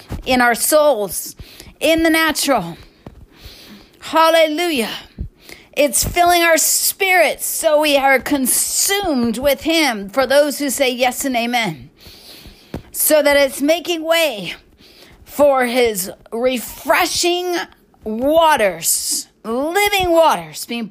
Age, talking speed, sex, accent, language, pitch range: 40-59, 105 wpm, female, American, English, 245-310 Hz